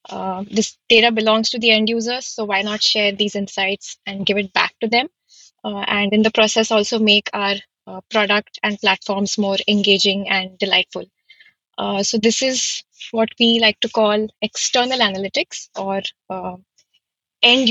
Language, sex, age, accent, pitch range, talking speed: English, female, 20-39, Indian, 200-225 Hz, 170 wpm